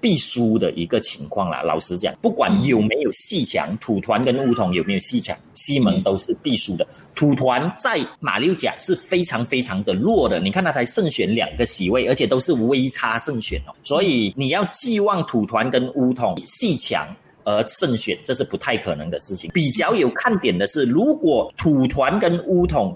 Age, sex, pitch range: 30-49, male, 115-180 Hz